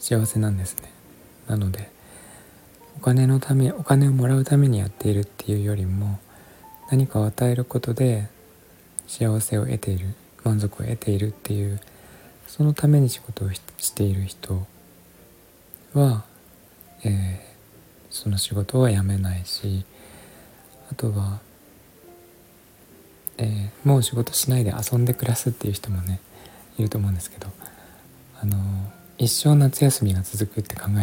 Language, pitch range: Japanese, 95-120 Hz